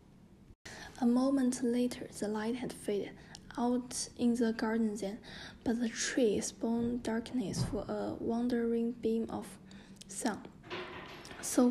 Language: English